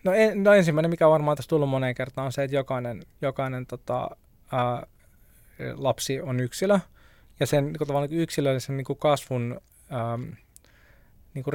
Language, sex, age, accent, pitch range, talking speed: Finnish, male, 20-39, native, 125-150 Hz, 155 wpm